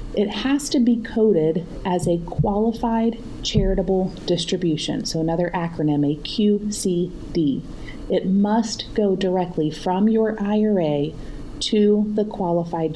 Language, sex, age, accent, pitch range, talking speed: English, female, 30-49, American, 160-210 Hz, 115 wpm